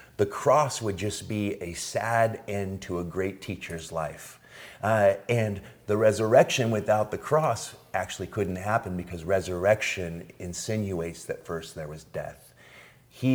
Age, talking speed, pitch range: 40-59, 145 wpm, 95-130 Hz